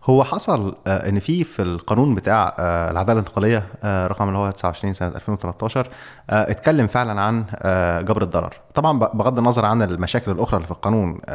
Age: 20-39